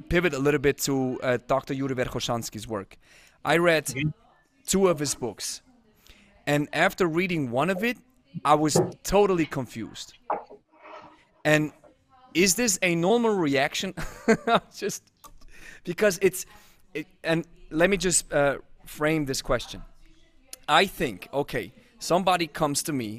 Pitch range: 135-175 Hz